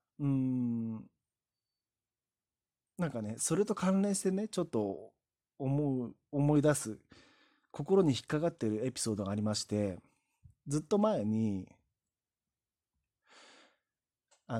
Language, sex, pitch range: Japanese, male, 115-180 Hz